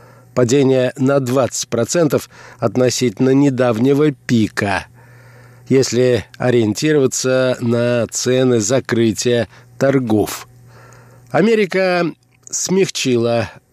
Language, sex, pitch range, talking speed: Russian, male, 120-145 Hz, 60 wpm